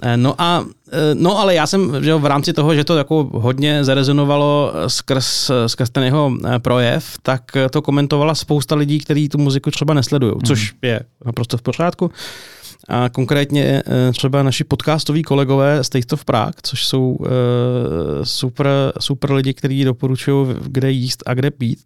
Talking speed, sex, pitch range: 155 wpm, male, 130-150 Hz